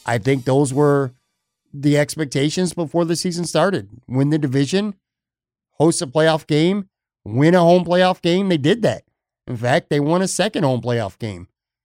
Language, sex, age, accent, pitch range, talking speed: English, male, 50-69, American, 120-150 Hz, 170 wpm